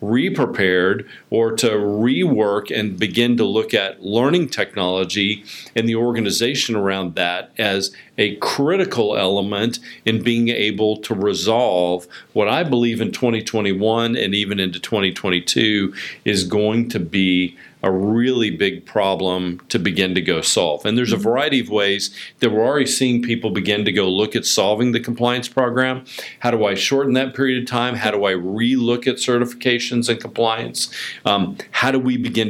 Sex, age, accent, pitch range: male, 50-69, American, 95-120 Hz